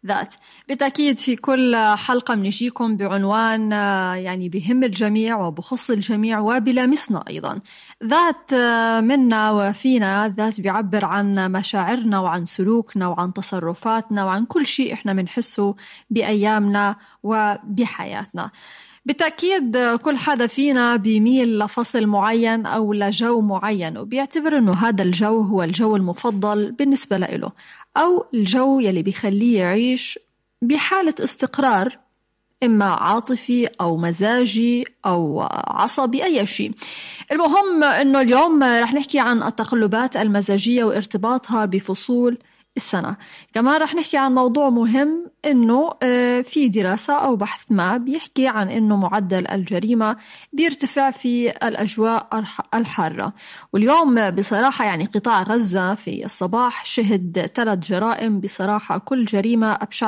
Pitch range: 205-255 Hz